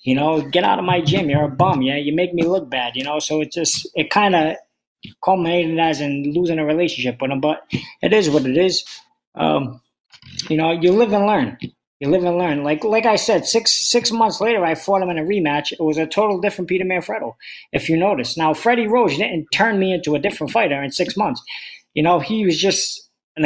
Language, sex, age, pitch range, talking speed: English, male, 20-39, 155-205 Hz, 235 wpm